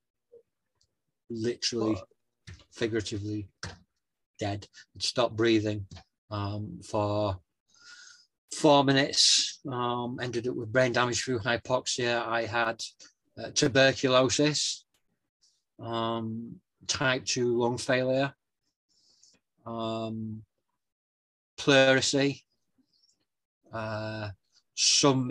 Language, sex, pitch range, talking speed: English, male, 115-130 Hz, 70 wpm